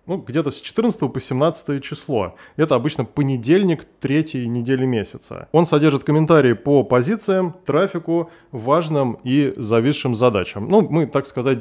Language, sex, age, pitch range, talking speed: Russian, male, 20-39, 125-155 Hz, 140 wpm